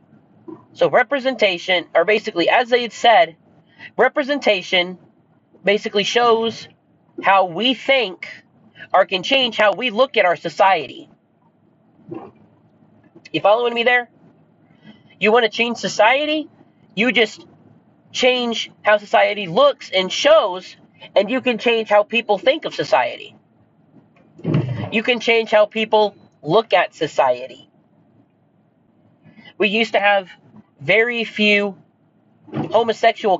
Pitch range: 180-240 Hz